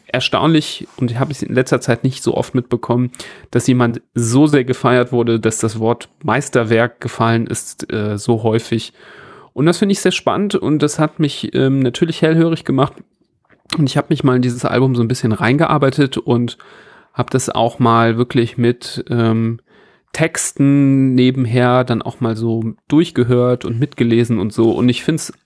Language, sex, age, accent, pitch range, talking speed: German, male, 40-59, German, 120-145 Hz, 175 wpm